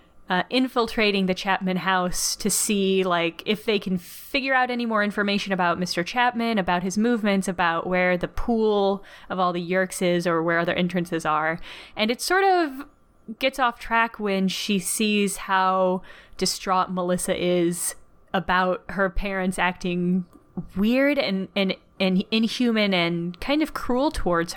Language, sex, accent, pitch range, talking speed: English, female, American, 180-225 Hz, 155 wpm